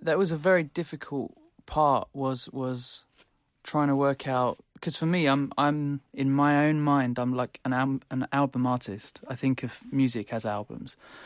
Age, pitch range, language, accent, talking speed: 20-39, 125-140 Hz, German, British, 180 wpm